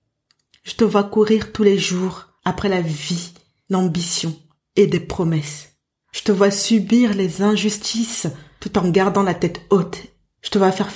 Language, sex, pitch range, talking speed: French, female, 170-210 Hz, 165 wpm